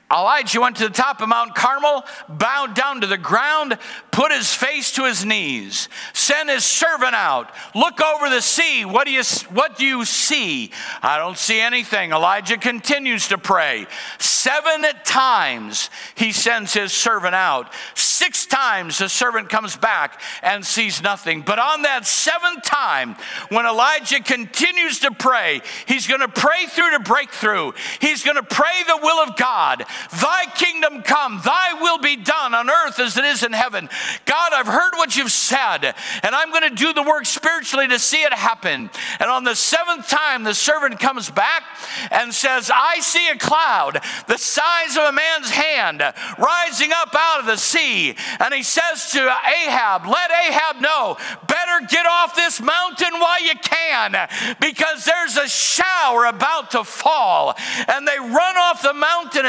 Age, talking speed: 60-79, 170 wpm